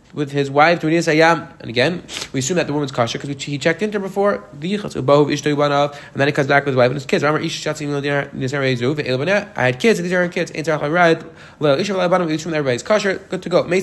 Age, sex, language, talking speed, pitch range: 20-39, male, English, 195 wpm, 140-175 Hz